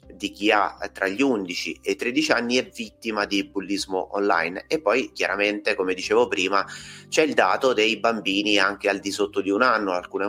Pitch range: 95-115 Hz